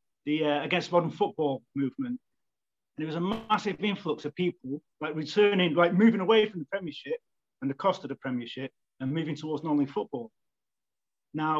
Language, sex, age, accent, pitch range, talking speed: English, male, 30-49, British, 145-175 Hz, 175 wpm